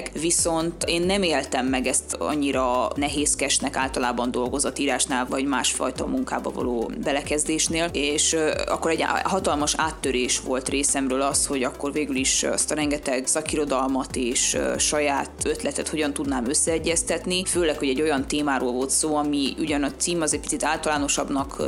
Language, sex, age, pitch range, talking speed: Hungarian, female, 20-39, 140-165 Hz, 145 wpm